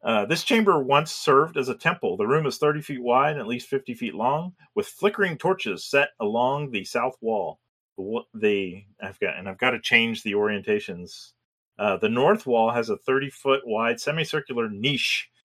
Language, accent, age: English, American, 40-59